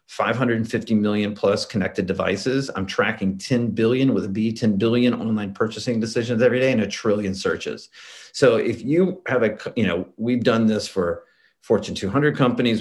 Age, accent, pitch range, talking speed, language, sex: 40-59, American, 105-135 Hz, 175 wpm, English, male